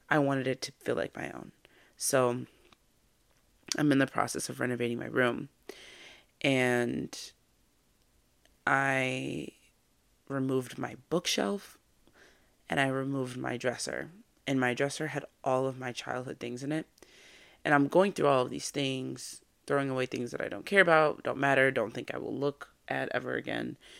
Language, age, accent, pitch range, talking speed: English, 20-39, American, 125-145 Hz, 160 wpm